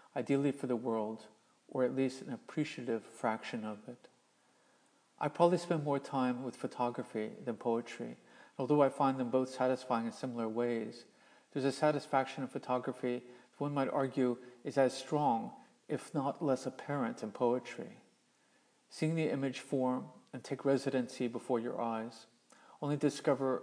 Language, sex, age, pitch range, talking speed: English, male, 50-69, 120-145 Hz, 150 wpm